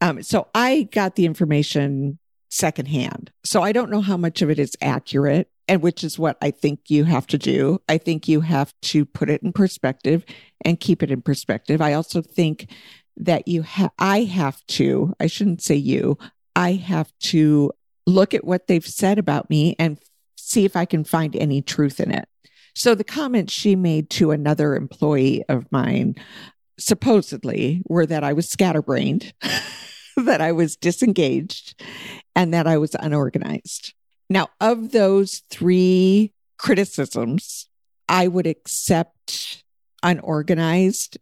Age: 50-69